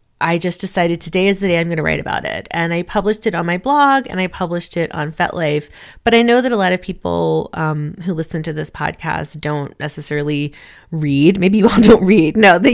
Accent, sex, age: American, female, 30-49